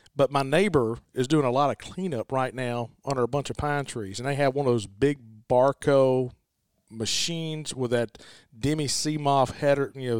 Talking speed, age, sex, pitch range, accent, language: 195 wpm, 40-59, male, 125-160 Hz, American, English